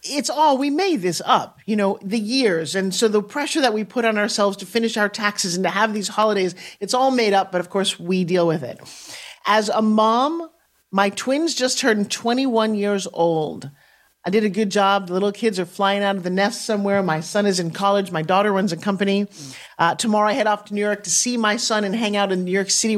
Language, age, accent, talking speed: English, 40-59, American, 245 wpm